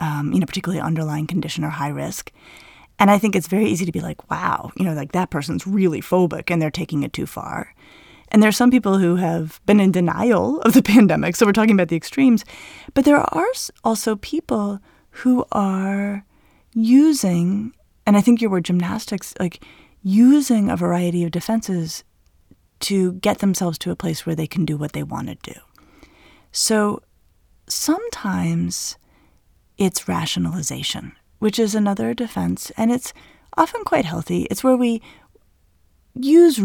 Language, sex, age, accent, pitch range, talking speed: English, female, 30-49, American, 165-230 Hz, 170 wpm